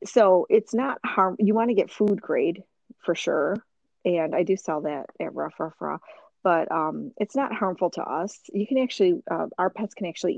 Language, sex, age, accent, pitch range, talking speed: English, female, 40-59, American, 165-205 Hz, 210 wpm